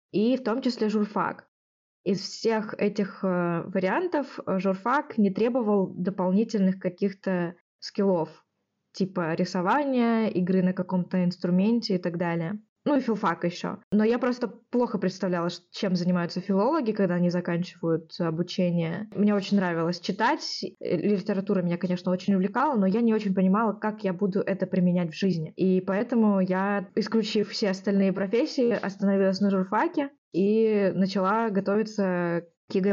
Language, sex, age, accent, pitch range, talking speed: Russian, female, 20-39, native, 185-215 Hz, 140 wpm